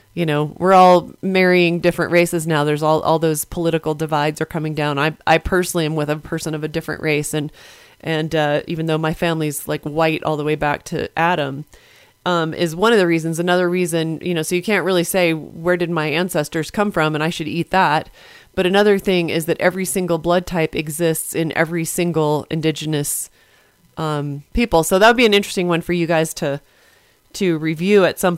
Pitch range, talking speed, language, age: 160-185 Hz, 210 wpm, English, 30-49